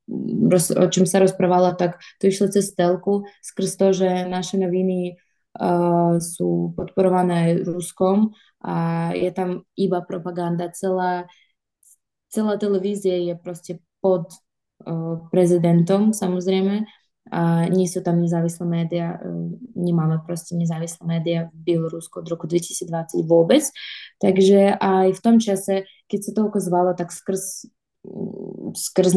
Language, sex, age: Slovak, female, 20-39